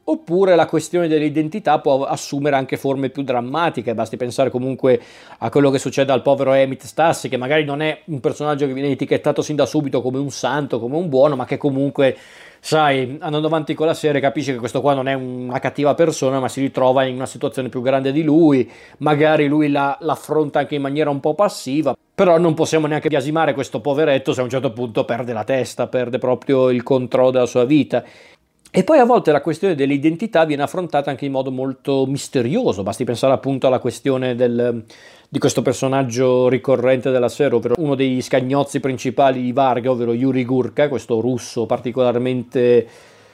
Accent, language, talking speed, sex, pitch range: native, Italian, 190 wpm, male, 130-150 Hz